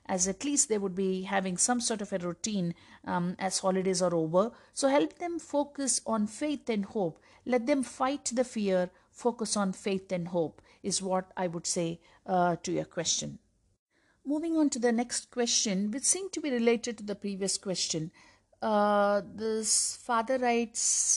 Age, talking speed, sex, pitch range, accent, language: 50-69, 180 wpm, female, 190-240 Hz, native, Telugu